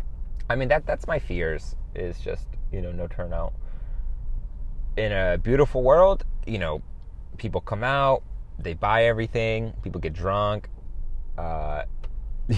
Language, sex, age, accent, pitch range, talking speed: English, male, 30-49, American, 85-115 Hz, 135 wpm